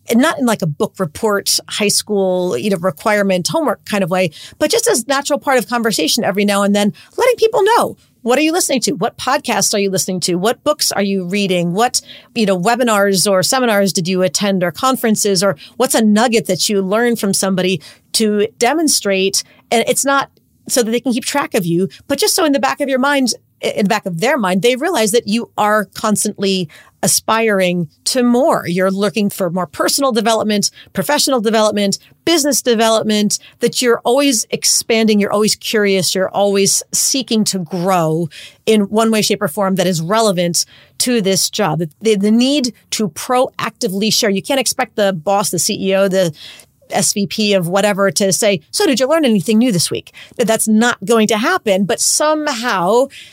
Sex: female